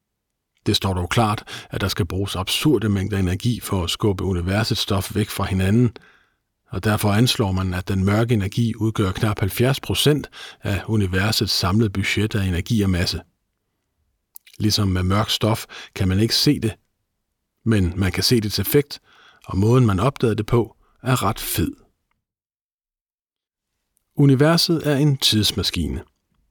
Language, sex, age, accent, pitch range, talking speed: Danish, male, 50-69, native, 95-115 Hz, 150 wpm